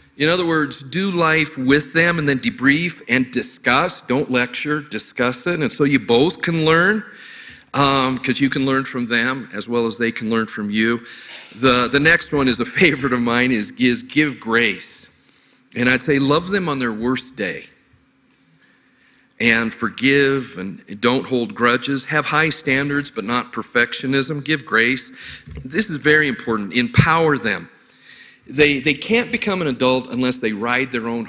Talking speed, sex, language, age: 175 wpm, male, English, 50-69